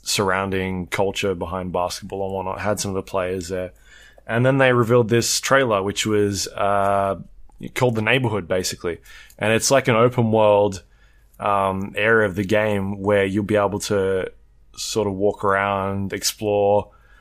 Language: English